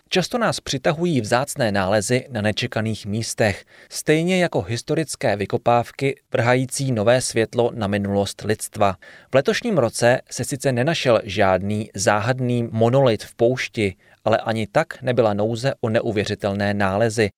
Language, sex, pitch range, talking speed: Czech, male, 105-135 Hz, 130 wpm